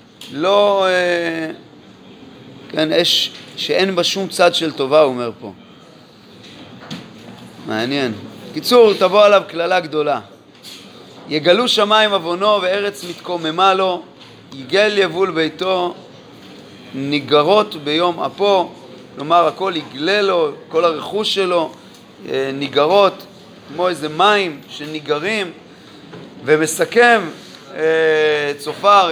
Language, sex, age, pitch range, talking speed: Hebrew, male, 30-49, 160-205 Hz, 90 wpm